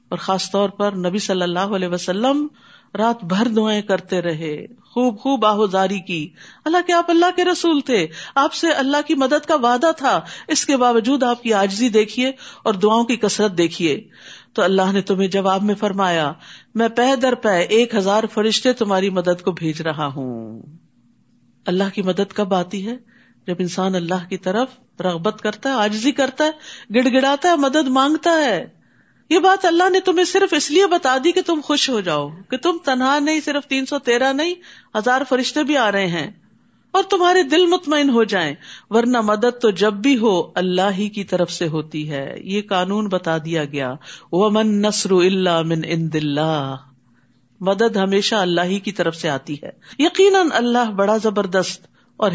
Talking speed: 180 wpm